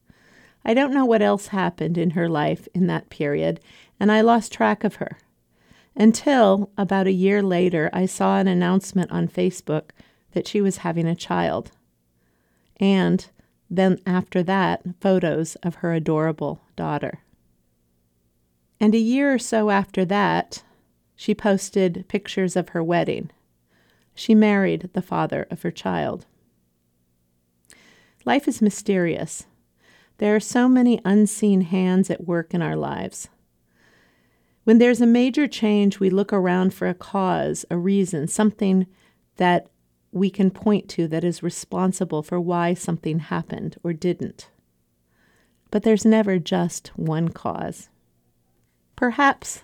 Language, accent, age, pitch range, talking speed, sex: English, American, 50-69, 145-200 Hz, 135 wpm, female